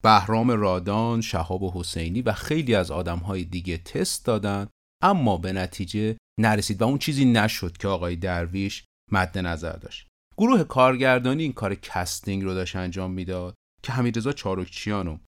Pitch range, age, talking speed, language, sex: 90-120 Hz, 40-59, 155 wpm, Persian, male